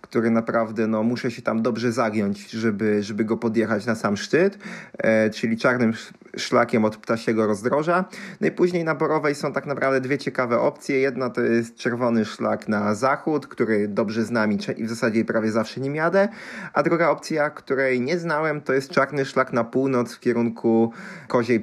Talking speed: 180 wpm